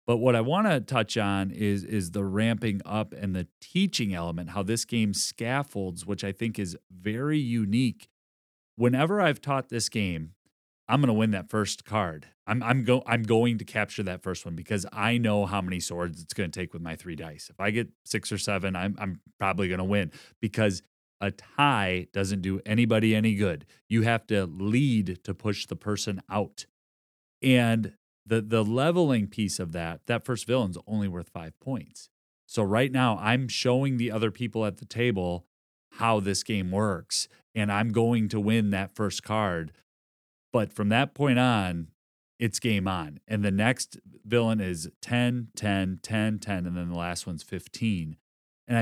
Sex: male